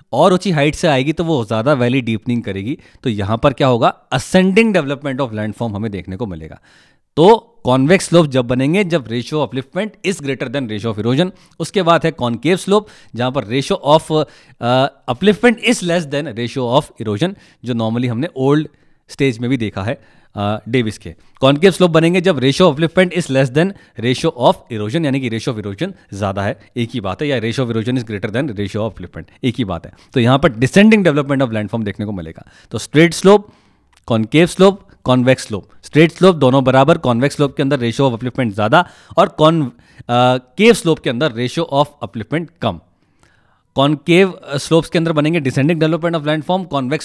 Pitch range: 115-165 Hz